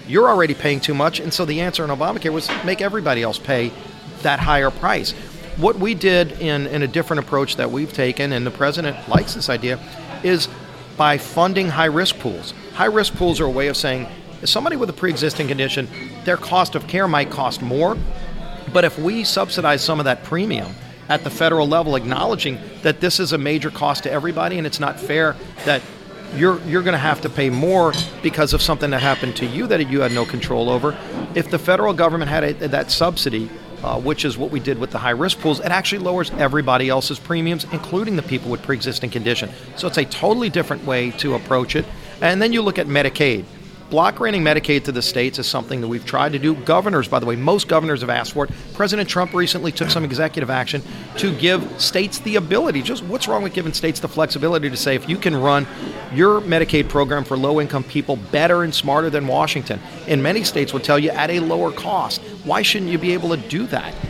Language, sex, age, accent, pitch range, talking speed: English, male, 40-59, American, 140-175 Hz, 215 wpm